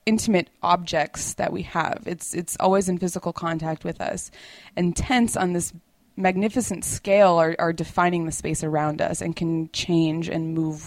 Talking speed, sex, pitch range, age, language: 170 wpm, female, 165-185 Hz, 20-39, English